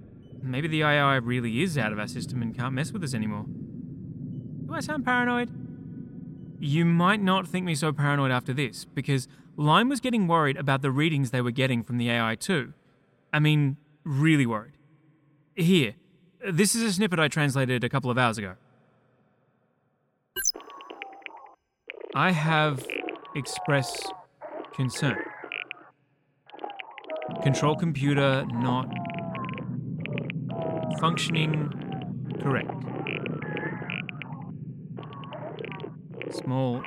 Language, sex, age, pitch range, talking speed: English, male, 20-39, 125-175 Hz, 110 wpm